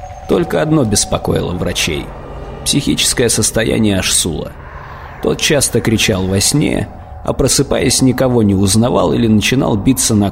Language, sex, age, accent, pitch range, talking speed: Russian, male, 30-49, native, 105-130 Hz, 120 wpm